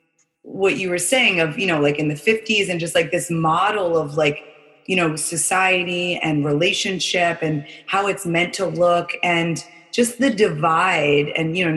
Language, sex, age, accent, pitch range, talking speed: English, female, 20-39, American, 150-190 Hz, 185 wpm